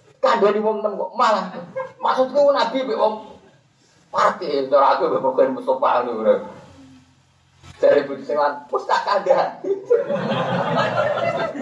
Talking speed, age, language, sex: 110 wpm, 30-49, Malay, male